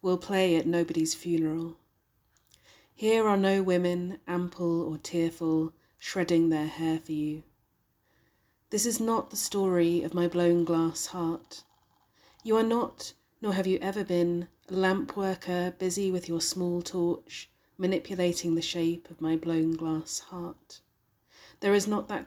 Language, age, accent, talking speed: English, 30-49, British, 150 wpm